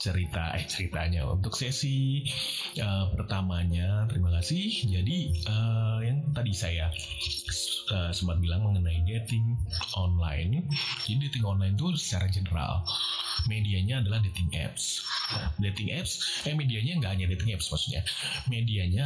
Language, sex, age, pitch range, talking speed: Indonesian, male, 30-49, 90-120 Hz, 125 wpm